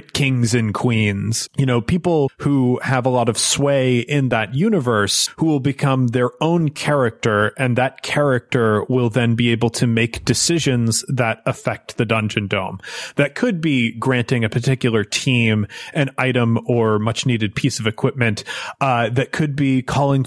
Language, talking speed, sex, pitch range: English, 165 wpm, male, 115-140 Hz